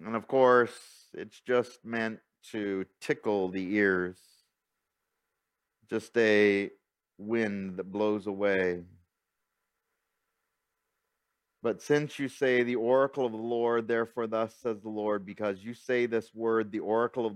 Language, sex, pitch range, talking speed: English, male, 100-125 Hz, 130 wpm